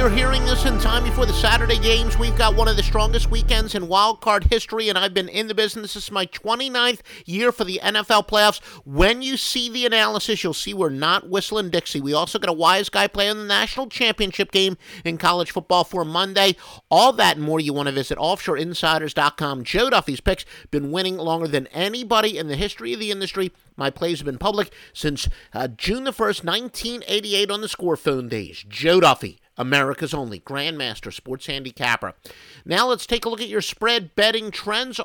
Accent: American